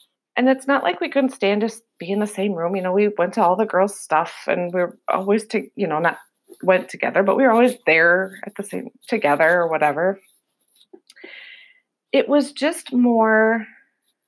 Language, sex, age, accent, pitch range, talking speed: English, female, 30-49, American, 185-235 Hz, 200 wpm